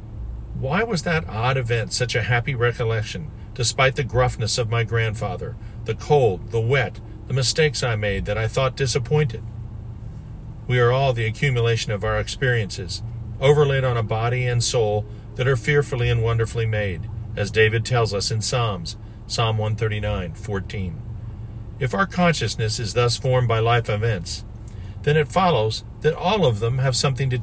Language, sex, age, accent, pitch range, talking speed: English, male, 50-69, American, 110-130 Hz, 165 wpm